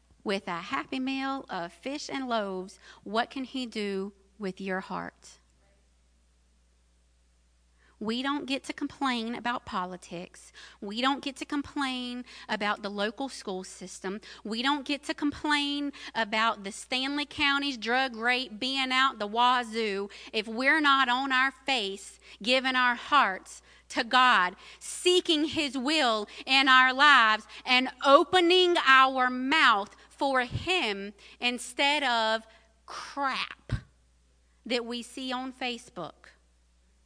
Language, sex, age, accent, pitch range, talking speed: English, female, 40-59, American, 205-295 Hz, 125 wpm